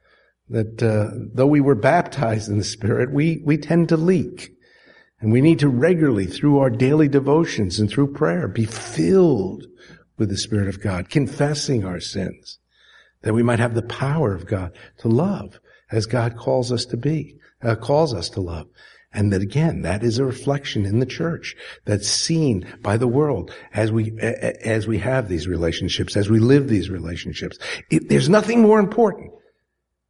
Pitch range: 110-160 Hz